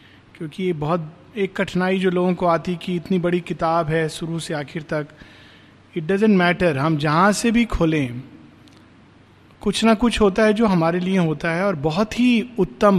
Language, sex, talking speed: Hindi, male, 195 wpm